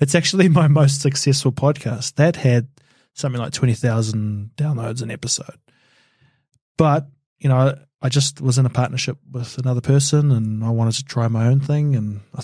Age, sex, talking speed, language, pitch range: 20-39, male, 175 wpm, English, 120-140 Hz